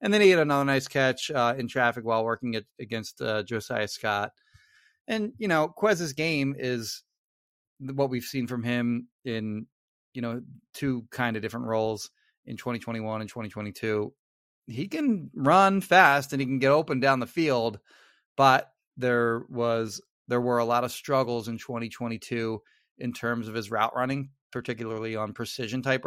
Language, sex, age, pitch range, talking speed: English, male, 30-49, 115-135 Hz, 170 wpm